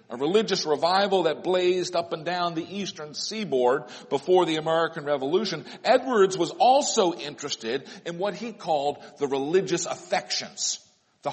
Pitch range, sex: 150-200 Hz, male